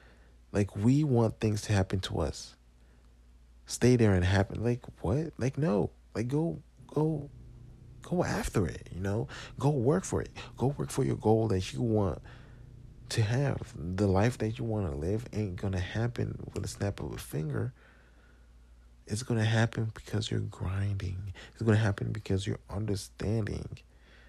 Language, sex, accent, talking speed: English, male, American, 170 wpm